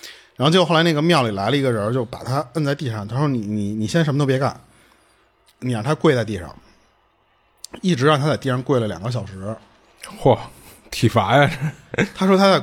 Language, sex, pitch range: Chinese, male, 110-160 Hz